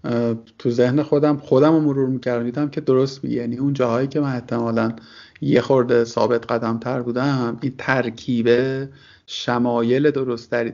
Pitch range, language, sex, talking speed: 125-155 Hz, Persian, male, 150 wpm